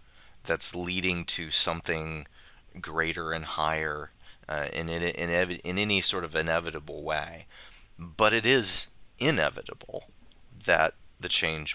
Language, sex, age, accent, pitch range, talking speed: English, male, 30-49, American, 80-100 Hz, 110 wpm